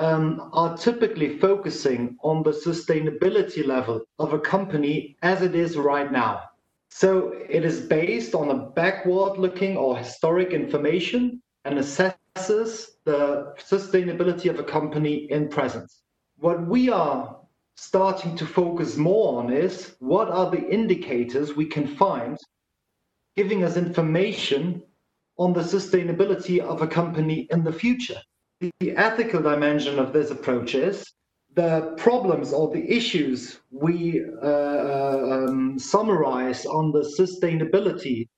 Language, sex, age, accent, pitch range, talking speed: English, male, 30-49, German, 155-195 Hz, 130 wpm